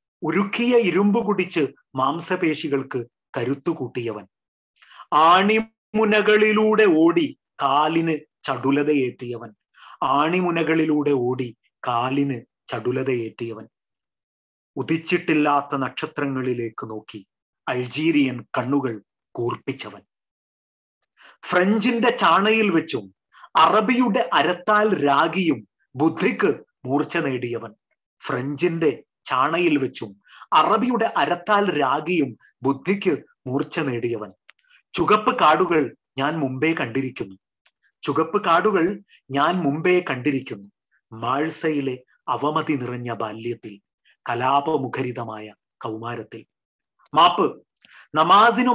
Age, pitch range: 30-49, 125-195 Hz